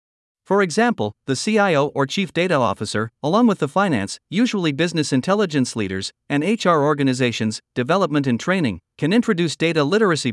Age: 50-69